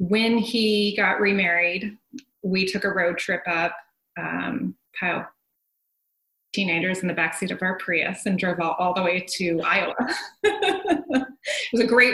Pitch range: 180-235 Hz